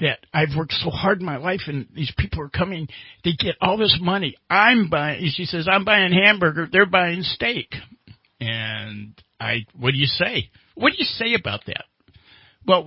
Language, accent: English, American